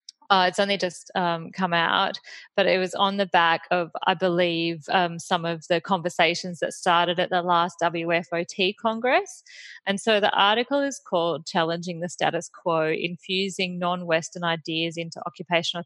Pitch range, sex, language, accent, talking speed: 170-200 Hz, female, English, Australian, 165 wpm